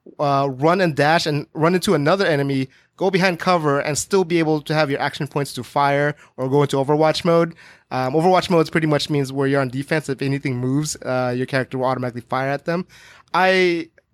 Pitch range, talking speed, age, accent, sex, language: 135-160 Hz, 210 wpm, 20-39, American, male, English